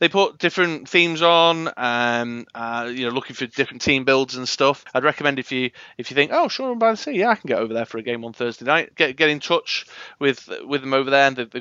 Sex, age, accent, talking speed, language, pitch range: male, 30-49, British, 270 wpm, English, 115-165 Hz